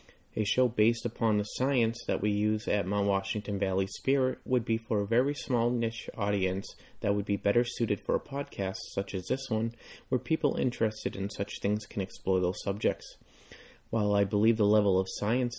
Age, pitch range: 30-49, 100-115 Hz